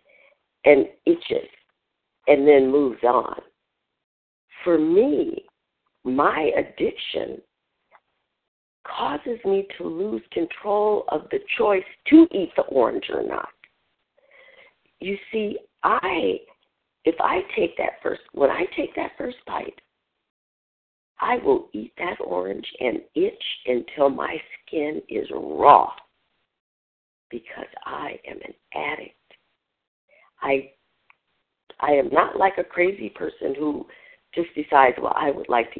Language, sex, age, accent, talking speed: English, female, 60-79, American, 120 wpm